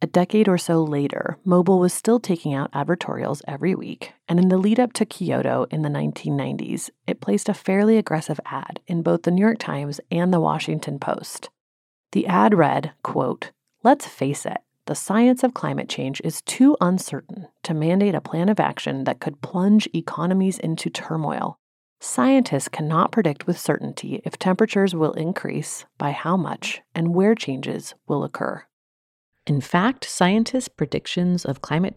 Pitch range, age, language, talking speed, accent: 140-205 Hz, 30-49, English, 165 wpm, American